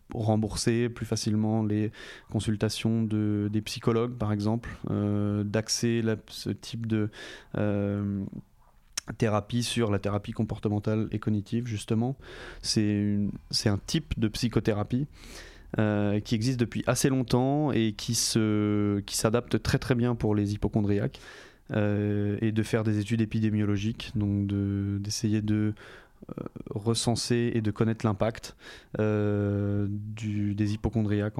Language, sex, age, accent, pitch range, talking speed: French, male, 20-39, French, 105-120 Hz, 120 wpm